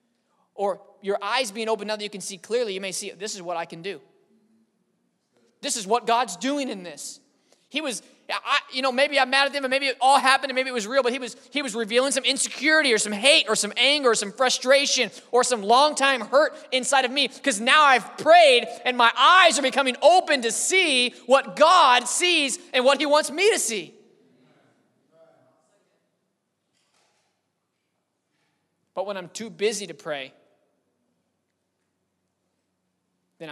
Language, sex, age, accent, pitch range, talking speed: English, male, 20-39, American, 195-265 Hz, 180 wpm